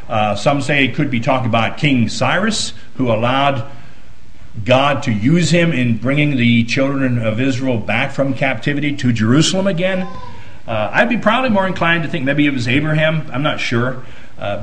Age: 50-69